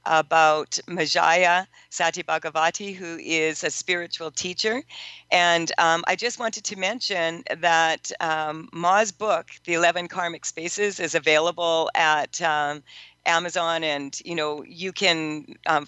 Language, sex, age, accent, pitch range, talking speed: English, female, 50-69, American, 155-180 Hz, 130 wpm